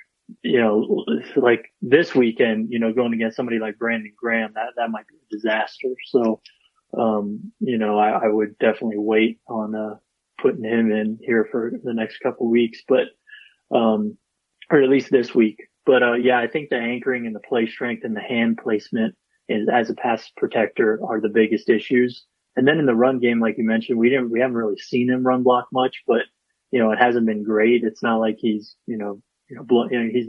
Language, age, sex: English, 30-49, male